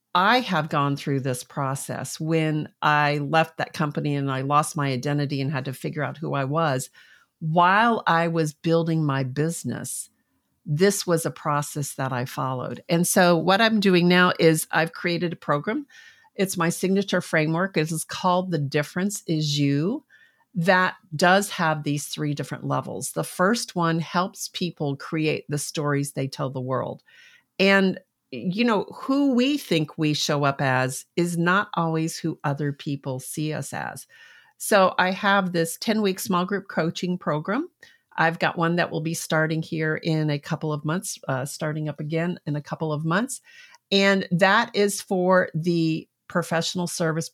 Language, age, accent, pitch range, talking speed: English, 50-69, American, 150-180 Hz, 170 wpm